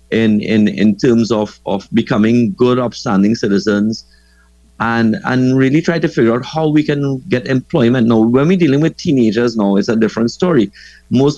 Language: English